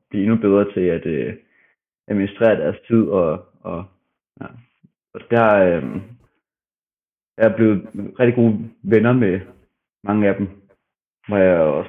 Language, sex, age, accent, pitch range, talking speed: Danish, male, 30-49, native, 95-110 Hz, 135 wpm